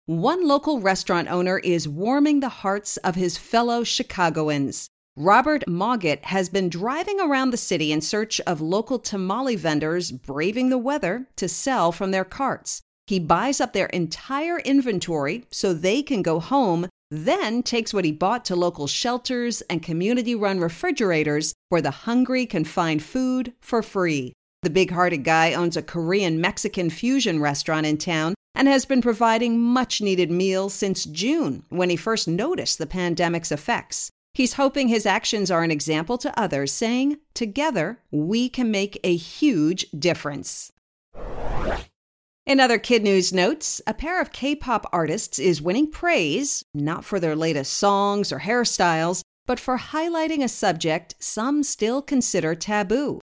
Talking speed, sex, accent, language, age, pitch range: 150 wpm, female, American, English, 50-69, 170-250 Hz